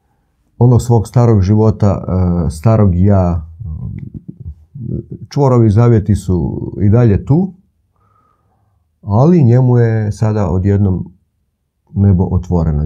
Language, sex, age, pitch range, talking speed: Croatian, male, 50-69, 85-110 Hz, 90 wpm